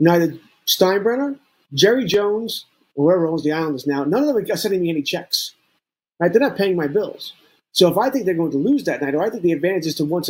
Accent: American